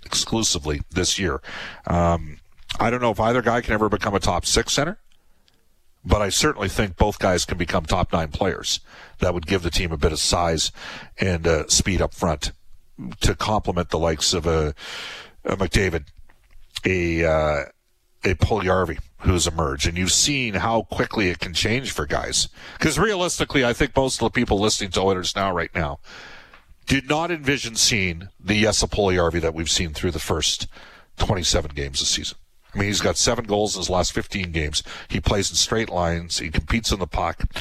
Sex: male